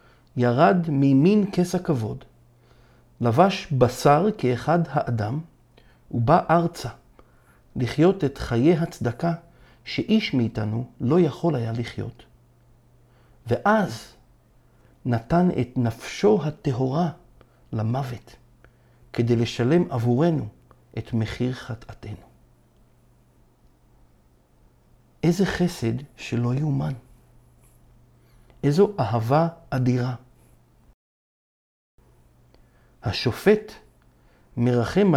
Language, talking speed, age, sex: Hebrew, 70 wpm, 50-69, male